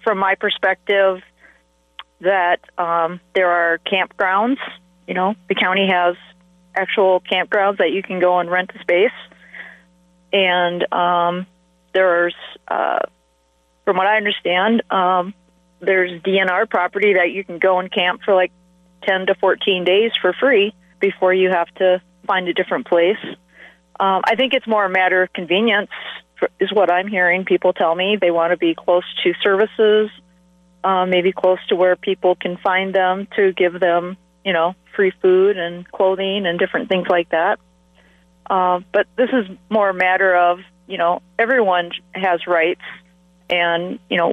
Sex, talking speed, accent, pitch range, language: female, 160 wpm, American, 175-195 Hz, English